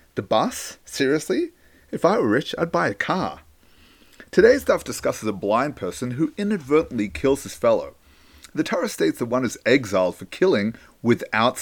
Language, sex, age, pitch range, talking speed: English, male, 30-49, 115-170 Hz, 165 wpm